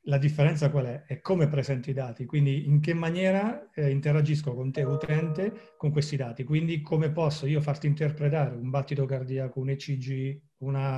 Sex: male